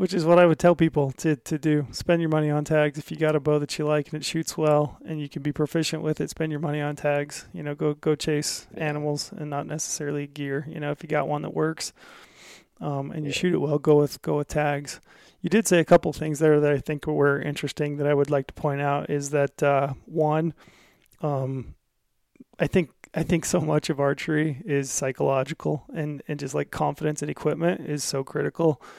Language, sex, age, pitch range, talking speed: English, male, 20-39, 145-155 Hz, 235 wpm